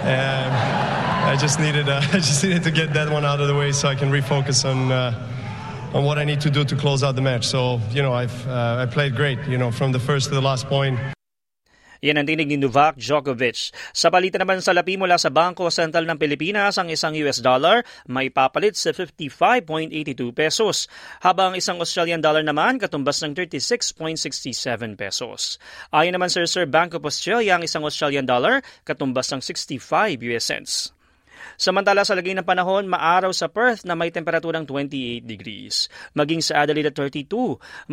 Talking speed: 185 wpm